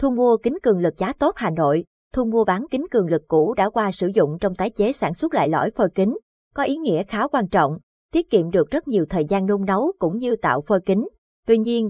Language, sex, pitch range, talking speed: Vietnamese, female, 180-235 Hz, 255 wpm